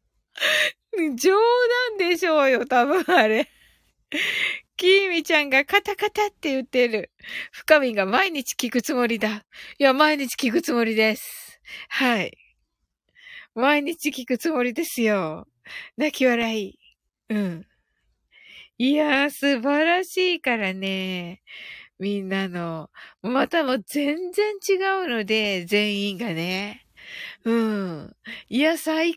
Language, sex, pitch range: Japanese, female, 230-350 Hz